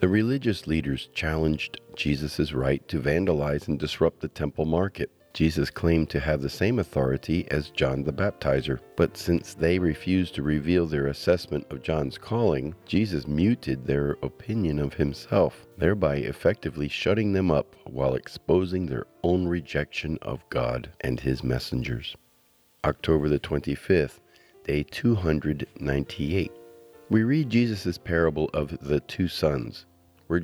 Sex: male